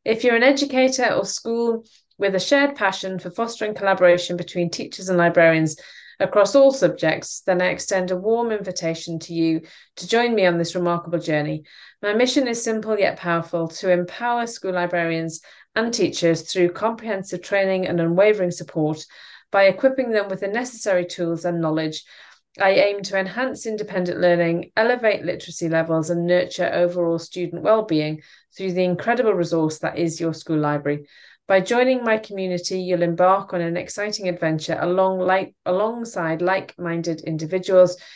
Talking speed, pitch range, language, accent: 155 wpm, 165-210 Hz, English, British